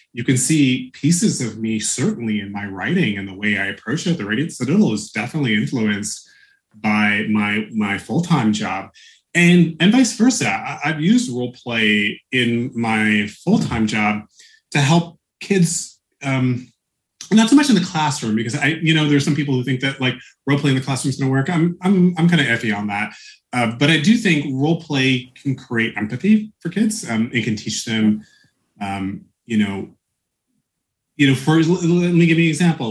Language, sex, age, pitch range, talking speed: English, male, 30-49, 110-155 Hz, 200 wpm